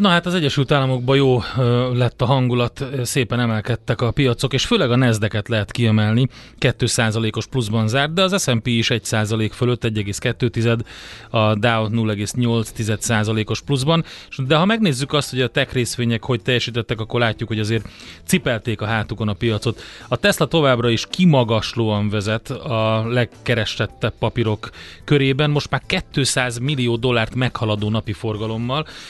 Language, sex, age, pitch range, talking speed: Hungarian, male, 30-49, 110-130 Hz, 150 wpm